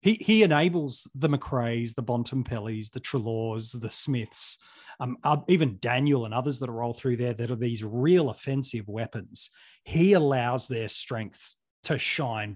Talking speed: 160 wpm